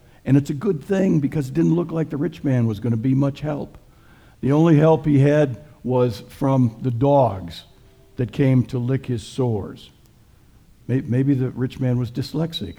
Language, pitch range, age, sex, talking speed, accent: English, 115-150 Hz, 60-79, male, 190 wpm, American